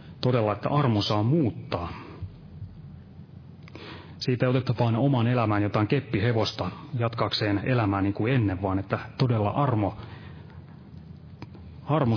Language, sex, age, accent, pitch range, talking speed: Finnish, male, 30-49, native, 100-130 Hz, 115 wpm